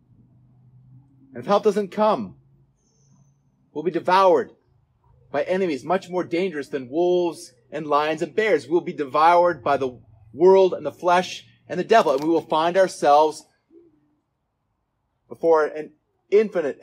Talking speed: 140 wpm